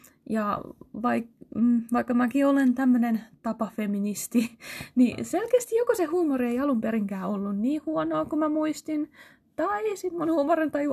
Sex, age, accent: female, 20-39, native